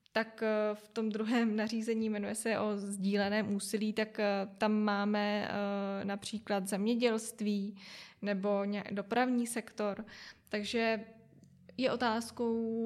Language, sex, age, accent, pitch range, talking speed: Czech, female, 20-39, native, 215-245 Hz, 100 wpm